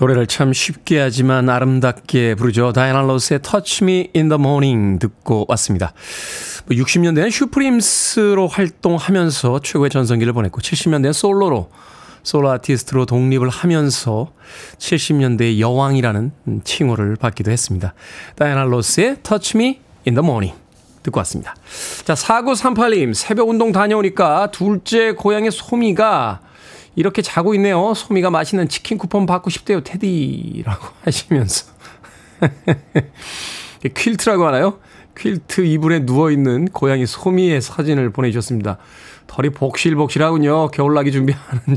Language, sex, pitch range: Korean, male, 125-175 Hz